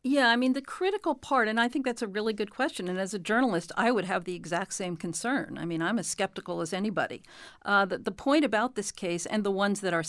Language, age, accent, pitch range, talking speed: English, 50-69, American, 170-220 Hz, 260 wpm